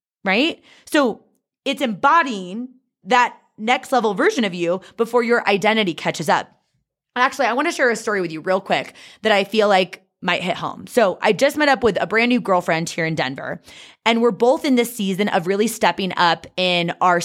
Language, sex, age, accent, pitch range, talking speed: English, female, 20-39, American, 175-235 Hz, 200 wpm